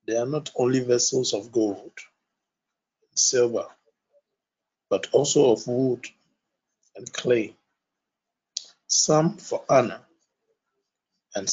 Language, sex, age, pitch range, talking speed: English, male, 50-69, 120-145 Hz, 95 wpm